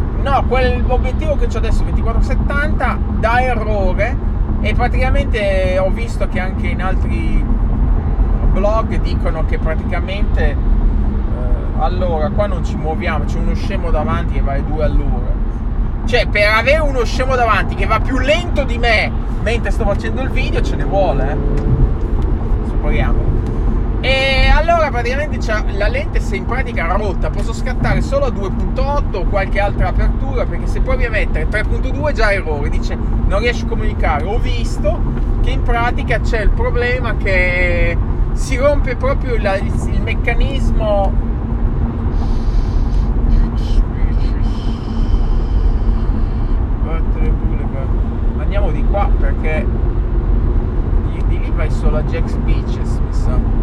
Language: Italian